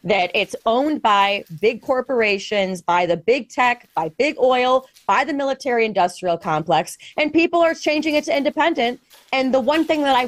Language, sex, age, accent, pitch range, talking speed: English, female, 30-49, American, 200-275 Hz, 175 wpm